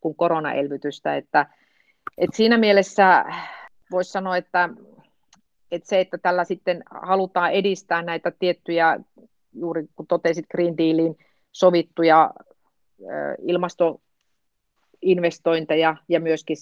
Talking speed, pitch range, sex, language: 90 wpm, 155-185 Hz, female, Finnish